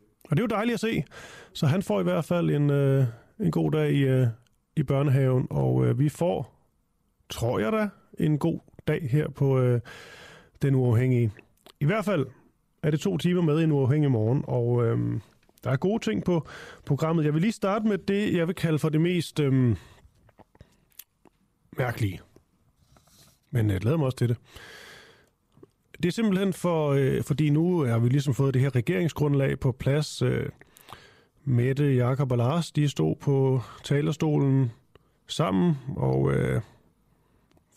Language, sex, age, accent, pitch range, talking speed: Danish, male, 30-49, native, 120-155 Hz, 155 wpm